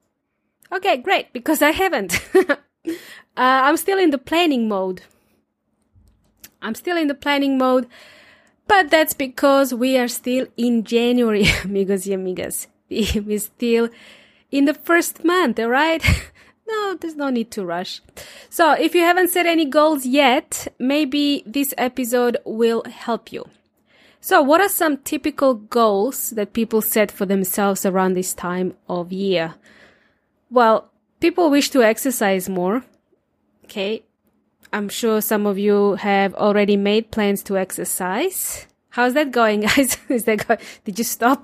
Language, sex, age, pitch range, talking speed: English, female, 20-39, 210-295 Hz, 145 wpm